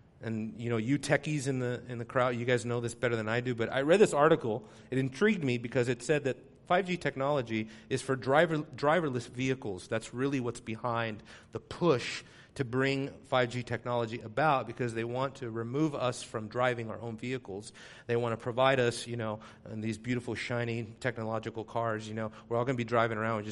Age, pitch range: 40-59, 115-170 Hz